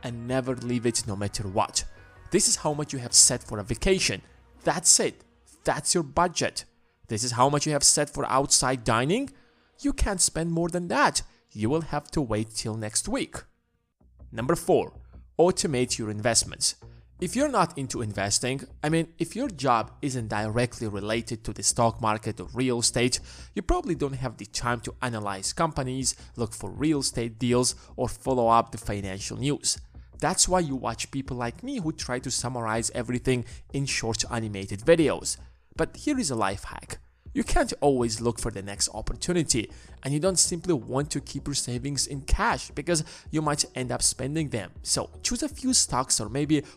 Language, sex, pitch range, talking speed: English, male, 110-150 Hz, 190 wpm